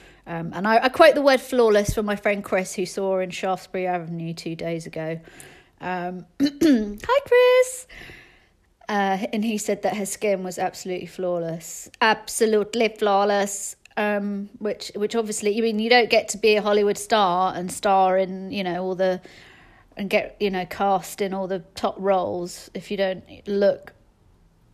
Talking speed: 170 wpm